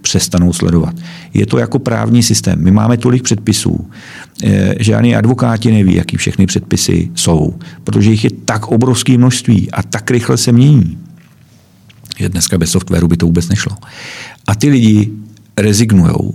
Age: 50-69